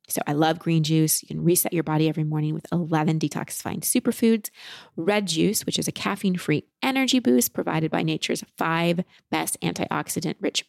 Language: English